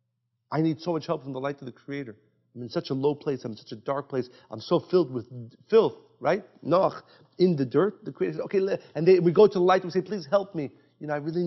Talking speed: 295 wpm